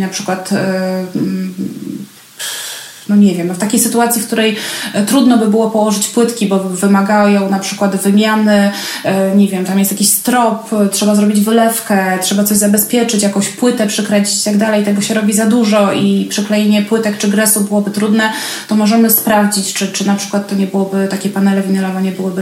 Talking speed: 175 wpm